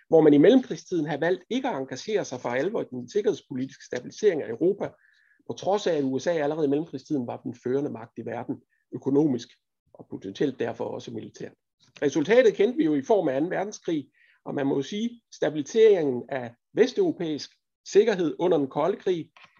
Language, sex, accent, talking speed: Danish, male, native, 185 wpm